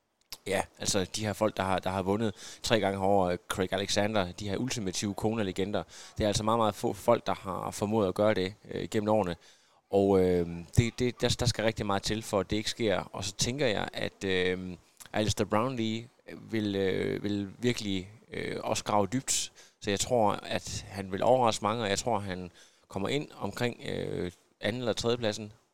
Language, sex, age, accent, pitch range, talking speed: Danish, male, 20-39, native, 95-115 Hz, 200 wpm